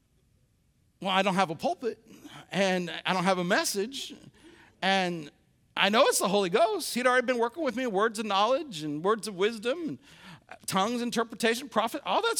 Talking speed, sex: 180 wpm, male